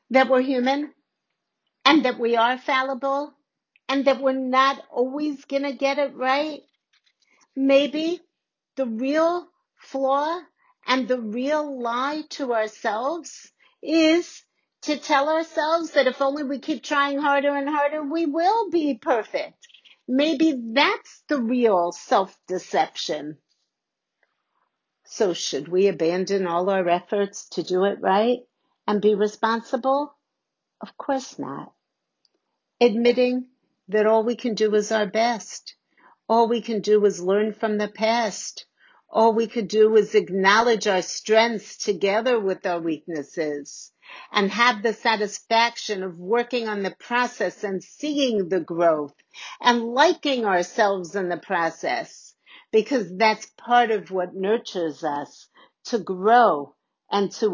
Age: 50-69